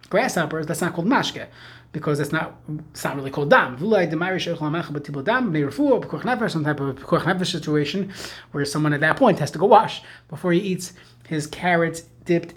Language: English